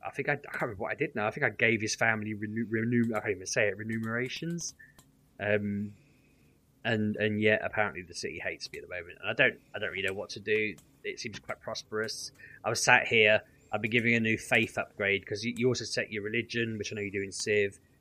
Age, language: 20-39, English